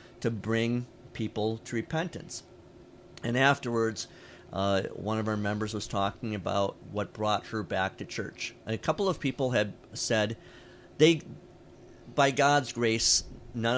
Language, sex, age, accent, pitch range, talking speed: English, male, 40-59, American, 100-120 Hz, 145 wpm